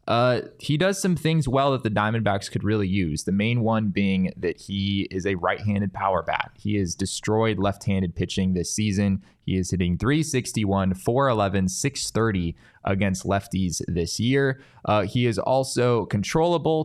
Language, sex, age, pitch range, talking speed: English, male, 20-39, 95-125 Hz, 160 wpm